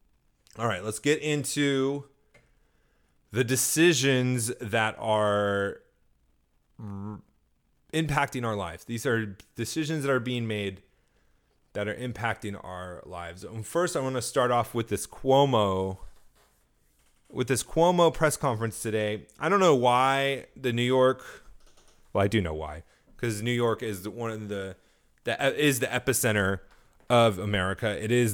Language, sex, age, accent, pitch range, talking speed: English, male, 30-49, American, 100-135 Hz, 145 wpm